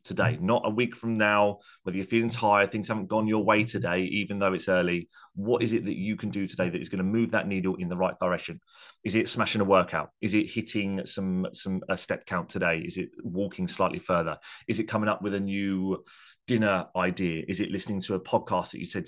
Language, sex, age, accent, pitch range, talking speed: English, male, 30-49, British, 95-110 Hz, 240 wpm